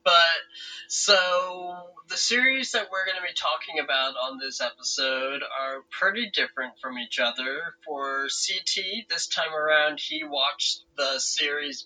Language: English